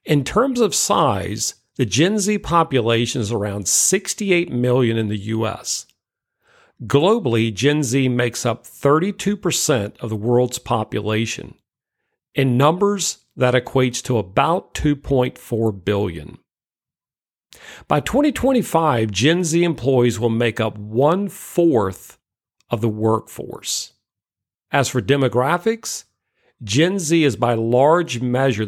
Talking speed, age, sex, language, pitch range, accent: 115 wpm, 50-69, male, English, 115-155 Hz, American